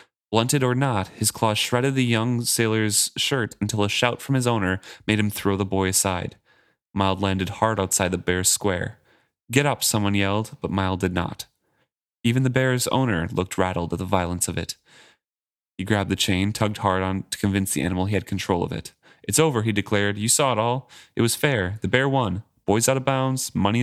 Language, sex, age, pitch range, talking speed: English, male, 30-49, 95-115 Hz, 210 wpm